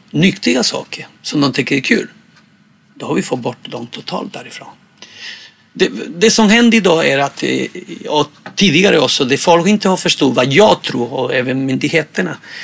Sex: male